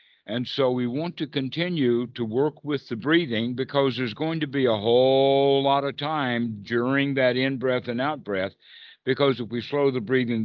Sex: male